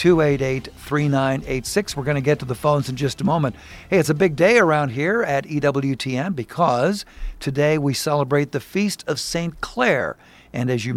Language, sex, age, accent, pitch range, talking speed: English, male, 50-69, American, 135-165 Hz, 175 wpm